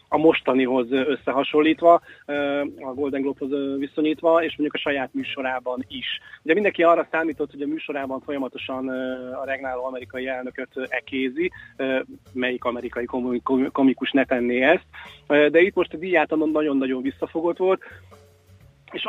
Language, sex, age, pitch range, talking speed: Hungarian, male, 30-49, 130-150 Hz, 130 wpm